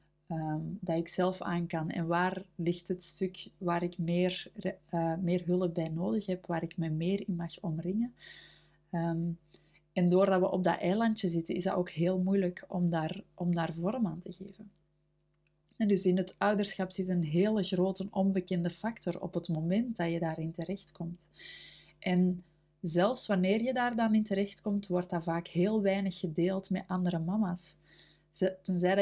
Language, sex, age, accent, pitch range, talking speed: Dutch, female, 20-39, Dutch, 170-195 Hz, 170 wpm